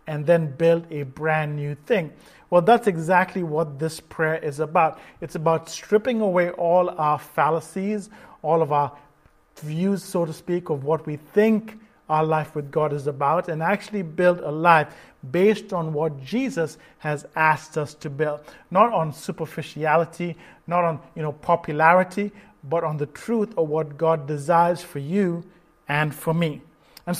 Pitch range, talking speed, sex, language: 155-190 Hz, 165 wpm, male, English